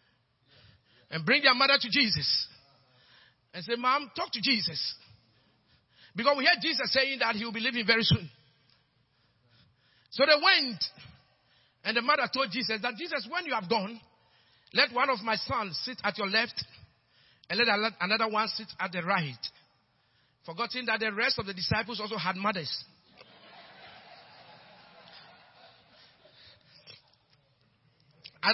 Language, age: English, 50-69